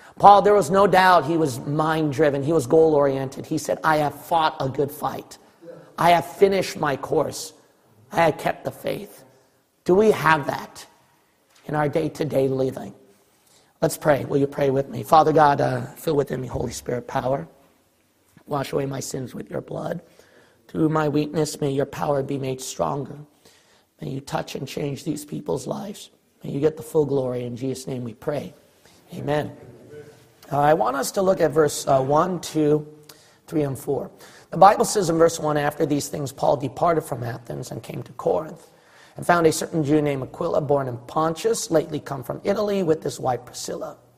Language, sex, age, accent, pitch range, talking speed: English, male, 40-59, American, 140-170 Hz, 185 wpm